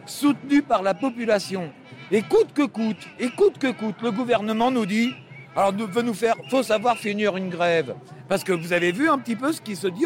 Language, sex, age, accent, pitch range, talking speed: French, male, 50-69, French, 185-240 Hz, 185 wpm